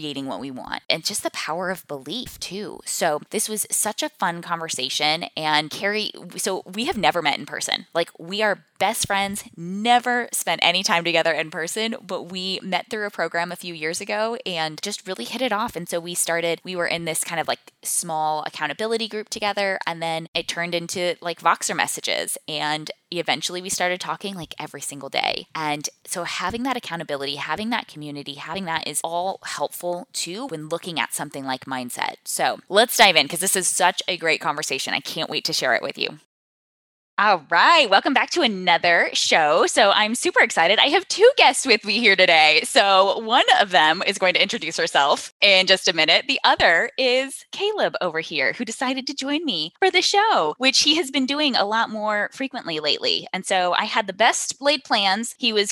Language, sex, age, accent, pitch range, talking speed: English, female, 10-29, American, 165-230 Hz, 205 wpm